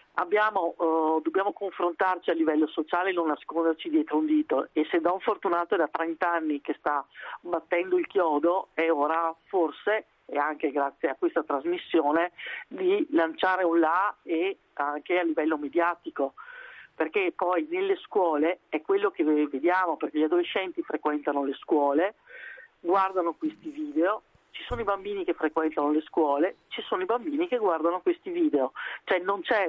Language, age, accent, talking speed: Italian, 40-59, native, 160 wpm